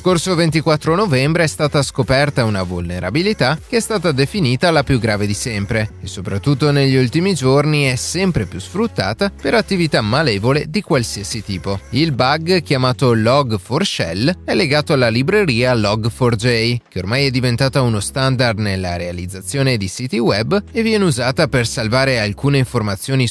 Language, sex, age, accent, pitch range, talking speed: Italian, male, 30-49, native, 110-155 Hz, 150 wpm